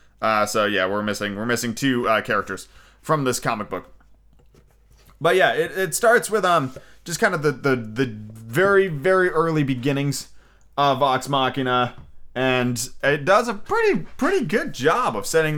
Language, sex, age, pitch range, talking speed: English, male, 20-39, 115-145 Hz, 170 wpm